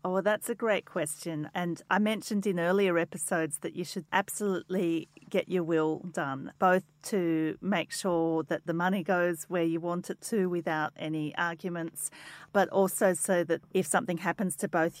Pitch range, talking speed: 165-190 Hz, 175 wpm